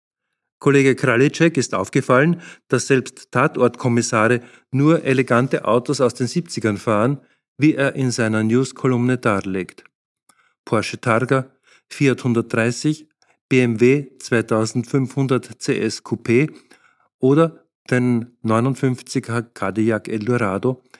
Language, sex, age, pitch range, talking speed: German, male, 50-69, 115-135 Hz, 90 wpm